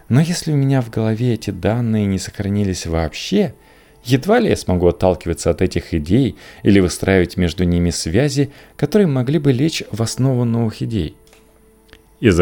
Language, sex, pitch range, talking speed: Russian, male, 85-115 Hz, 160 wpm